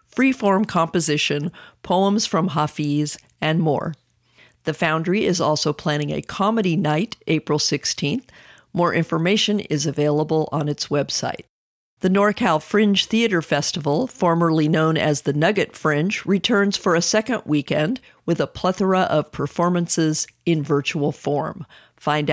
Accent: American